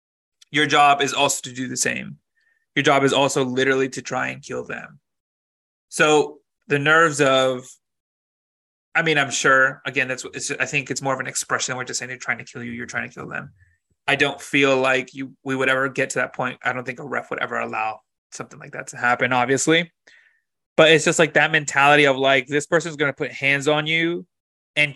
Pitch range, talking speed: 130-145 Hz, 220 wpm